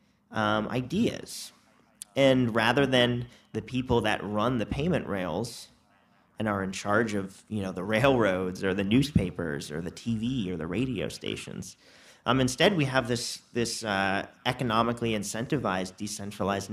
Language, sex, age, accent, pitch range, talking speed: English, male, 40-59, American, 105-135 Hz, 145 wpm